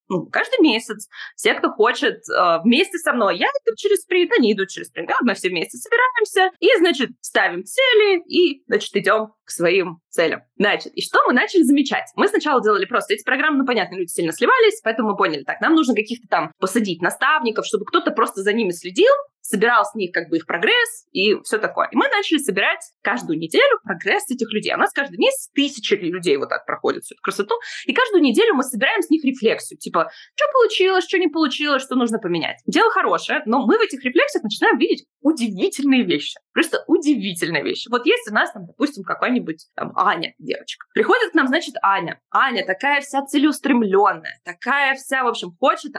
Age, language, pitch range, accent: 20-39, Russian, 215-360 Hz, native